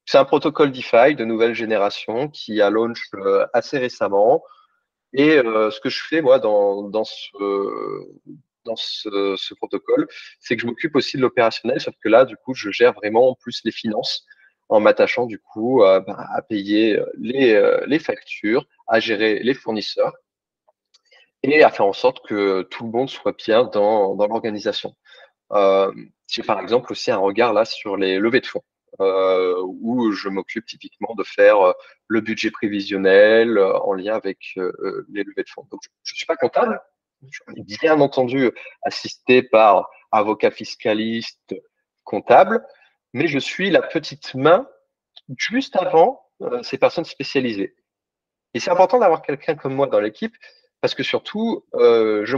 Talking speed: 165 wpm